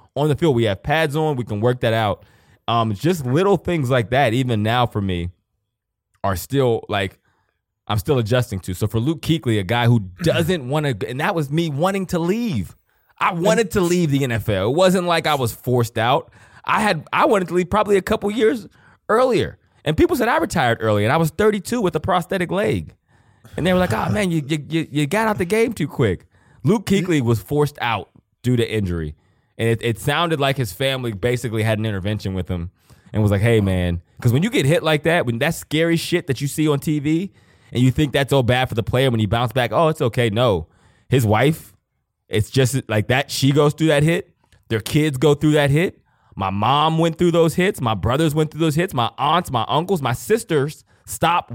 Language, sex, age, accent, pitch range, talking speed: English, male, 20-39, American, 110-160 Hz, 225 wpm